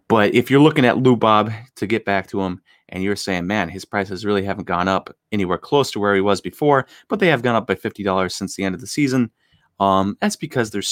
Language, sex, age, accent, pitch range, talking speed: English, male, 30-49, American, 95-135 Hz, 255 wpm